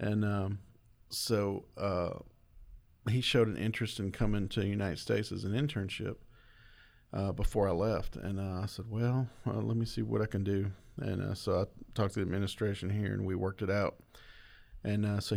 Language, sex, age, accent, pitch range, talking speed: English, male, 40-59, American, 100-115 Hz, 200 wpm